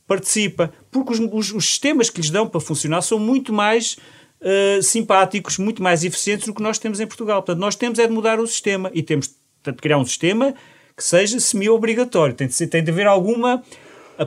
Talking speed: 210 wpm